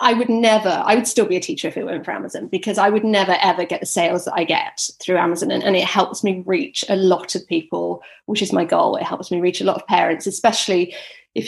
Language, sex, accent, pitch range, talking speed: English, female, British, 185-240 Hz, 265 wpm